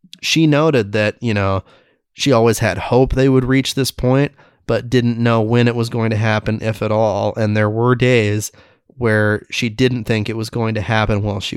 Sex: male